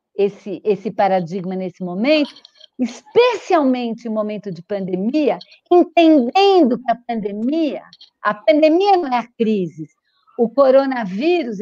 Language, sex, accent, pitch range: Portuguese, female, Brazilian, 230-325 Hz